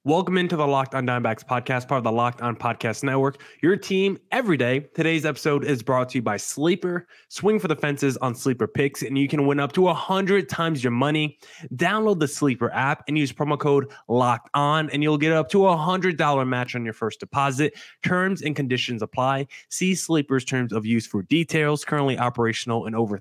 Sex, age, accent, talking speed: male, 20-39, American, 205 wpm